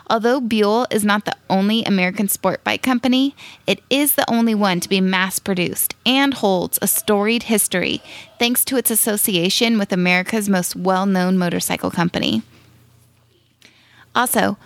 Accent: American